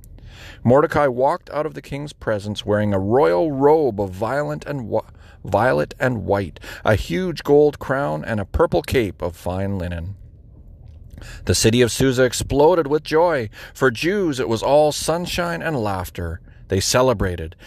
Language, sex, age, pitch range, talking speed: English, male, 40-59, 100-140 Hz, 145 wpm